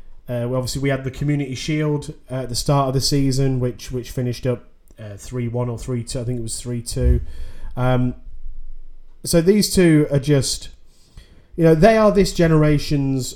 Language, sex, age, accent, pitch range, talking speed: English, male, 30-49, British, 120-145 Hz, 185 wpm